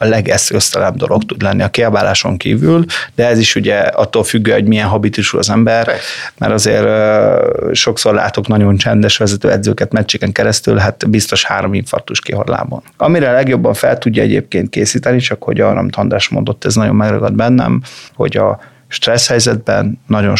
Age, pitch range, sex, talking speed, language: 30-49, 105-125 Hz, male, 165 wpm, Hungarian